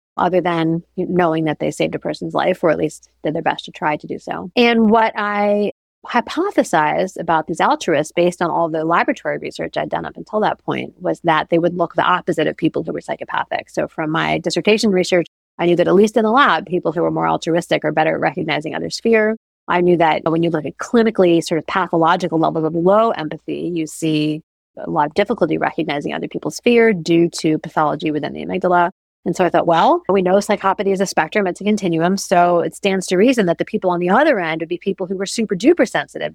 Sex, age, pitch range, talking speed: female, 30-49, 165-195 Hz, 230 wpm